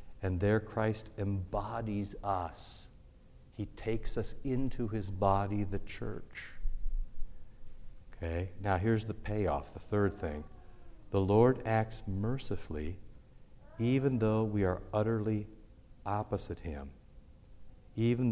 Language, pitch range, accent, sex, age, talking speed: English, 90-110 Hz, American, male, 60-79, 110 wpm